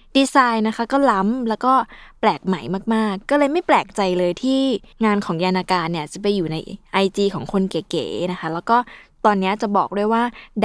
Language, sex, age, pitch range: Thai, female, 20-39, 185-240 Hz